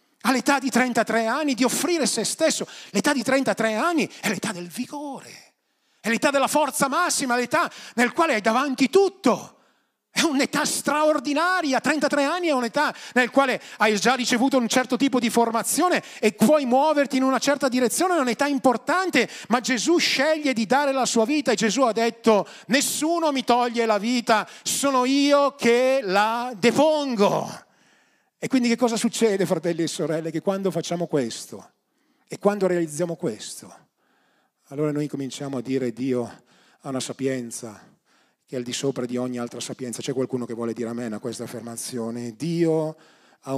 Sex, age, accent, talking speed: male, 40-59, native, 165 wpm